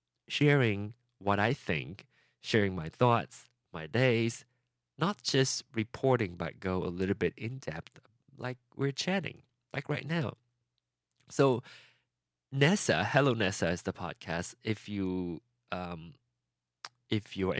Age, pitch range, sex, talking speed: 20-39, 90-125 Hz, male, 115 wpm